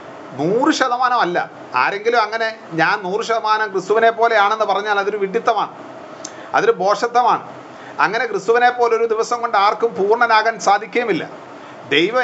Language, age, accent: Malayalam, 40-59, native